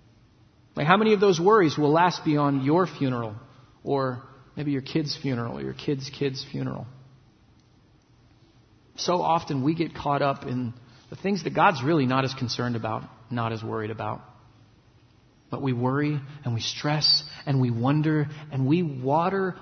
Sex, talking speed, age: male, 160 wpm, 40-59